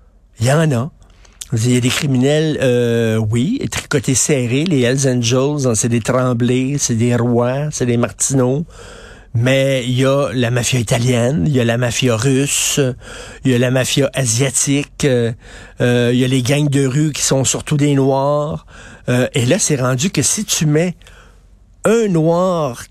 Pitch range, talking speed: 125-155 Hz, 180 wpm